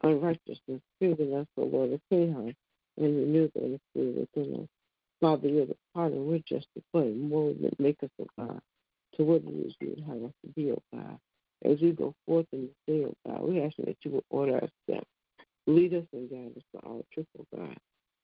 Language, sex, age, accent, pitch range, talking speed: English, female, 60-79, American, 130-160 Hz, 215 wpm